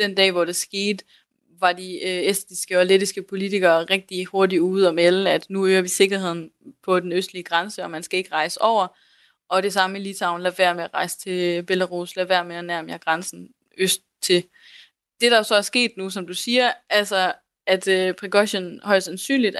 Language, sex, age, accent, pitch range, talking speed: Danish, female, 20-39, native, 180-205 Hz, 200 wpm